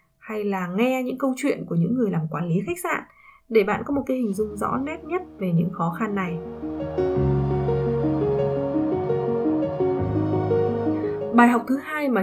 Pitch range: 190-250 Hz